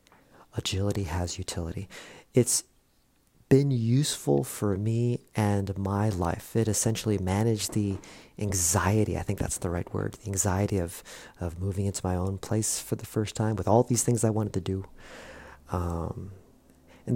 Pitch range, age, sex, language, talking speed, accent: 95-125 Hz, 40-59, male, English, 155 wpm, American